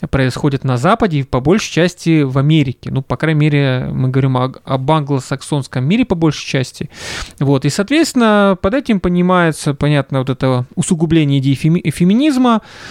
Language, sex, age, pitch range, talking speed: Russian, male, 20-39, 135-180 Hz, 155 wpm